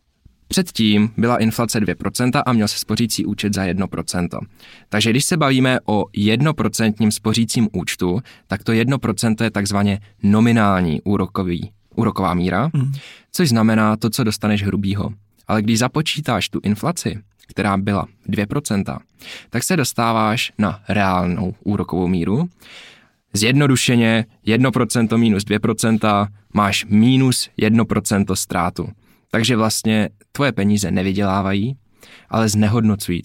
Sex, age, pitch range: male, 20-39, 100-115 Hz